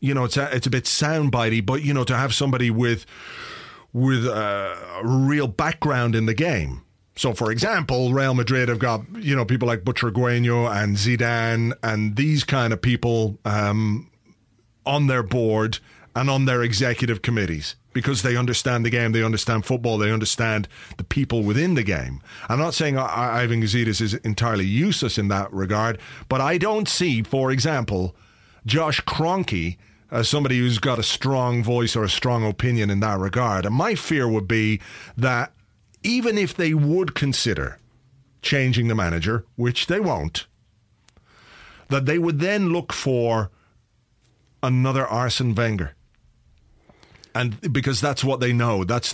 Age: 40-59